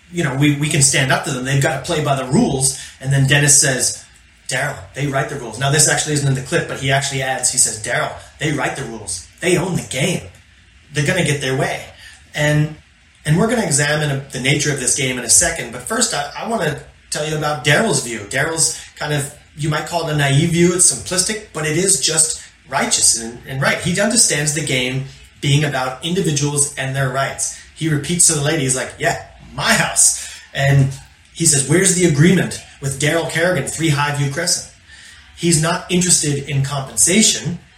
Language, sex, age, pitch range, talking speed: English, male, 30-49, 135-165 Hz, 215 wpm